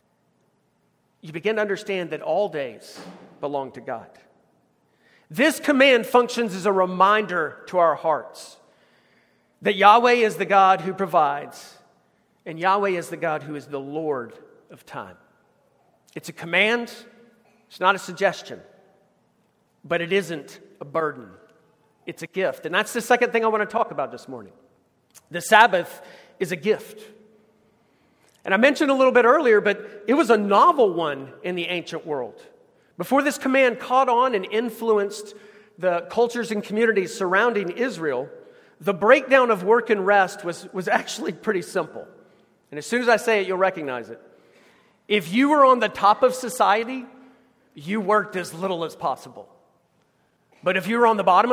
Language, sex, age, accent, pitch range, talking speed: English, male, 50-69, American, 175-235 Hz, 165 wpm